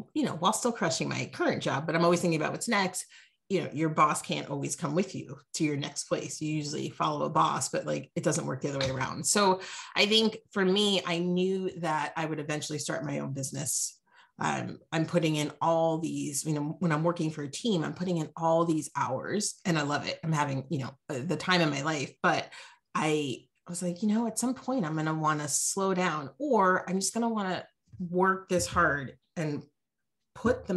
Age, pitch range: 30-49, 150-185 Hz